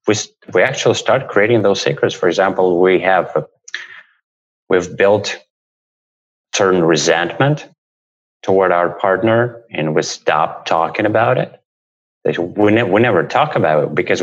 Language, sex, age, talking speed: English, male, 30-49, 135 wpm